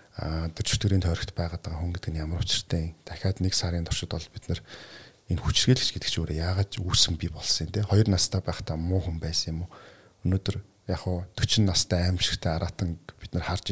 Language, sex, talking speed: English, male, 195 wpm